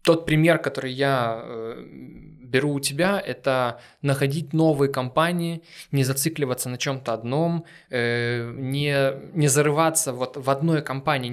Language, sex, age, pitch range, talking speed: Ukrainian, male, 20-39, 135-160 Hz, 120 wpm